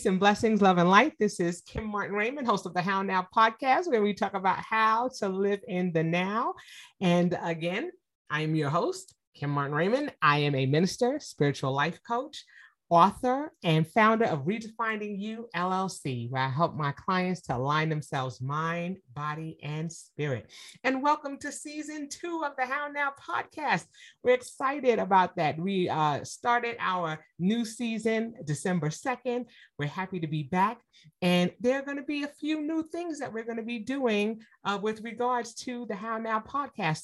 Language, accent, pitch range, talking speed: English, American, 175-250 Hz, 175 wpm